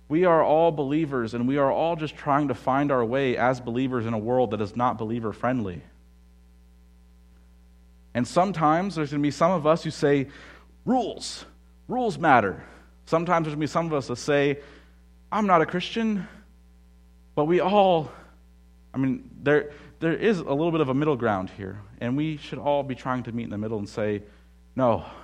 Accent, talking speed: American, 195 wpm